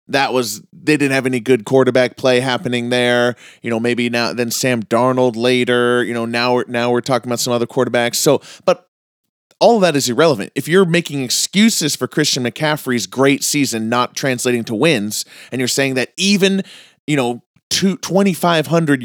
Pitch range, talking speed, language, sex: 120-155 Hz, 185 wpm, English, male